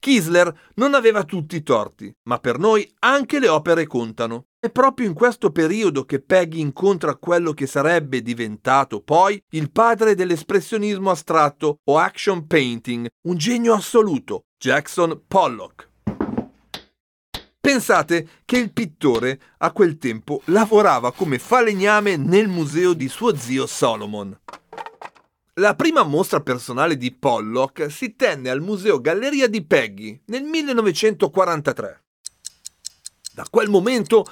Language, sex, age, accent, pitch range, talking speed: Italian, male, 40-59, native, 145-230 Hz, 125 wpm